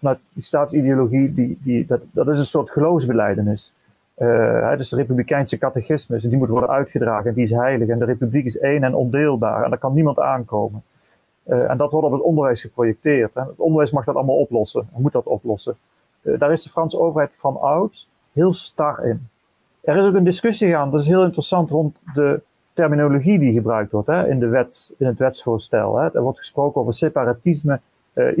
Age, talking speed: 40-59, 205 wpm